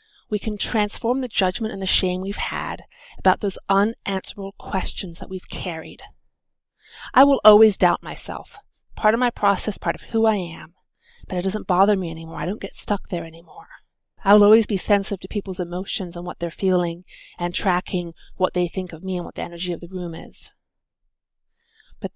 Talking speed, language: 190 wpm, English